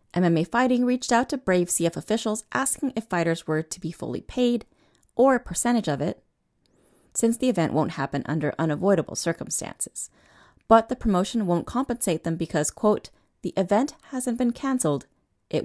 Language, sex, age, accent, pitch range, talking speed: English, female, 30-49, American, 160-235 Hz, 165 wpm